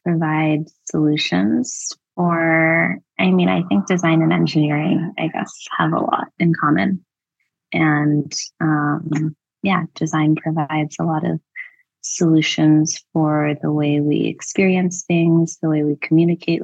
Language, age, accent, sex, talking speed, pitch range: English, 20-39, American, female, 130 wpm, 150-165 Hz